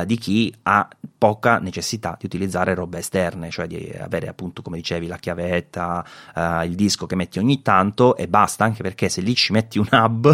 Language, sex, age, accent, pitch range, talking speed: Italian, male, 30-49, native, 90-110 Hz, 195 wpm